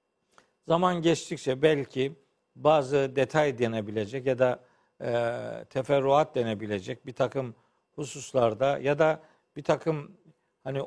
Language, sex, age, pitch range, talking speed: Turkish, male, 50-69, 125-170 Hz, 105 wpm